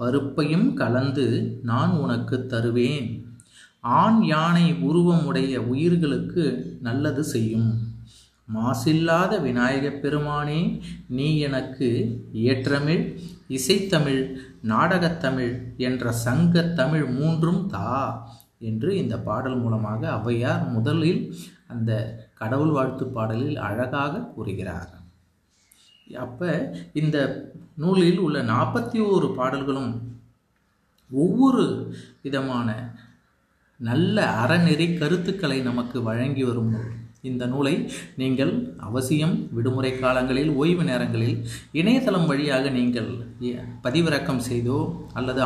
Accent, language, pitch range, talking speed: native, Tamil, 120-160 Hz, 85 wpm